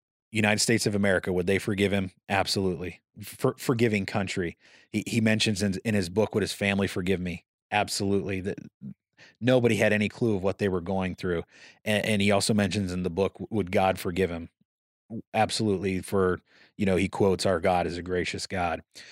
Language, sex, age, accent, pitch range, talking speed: English, male, 30-49, American, 95-110 Hz, 190 wpm